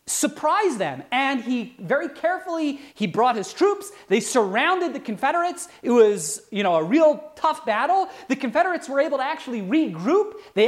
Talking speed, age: 170 wpm, 30-49